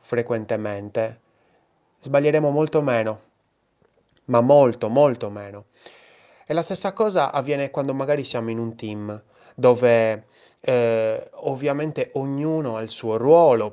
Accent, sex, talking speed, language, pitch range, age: native, male, 120 wpm, Italian, 110-135 Hz, 20-39